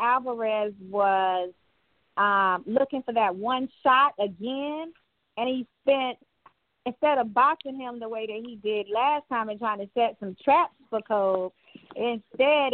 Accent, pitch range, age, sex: American, 195-265 Hz, 40-59, female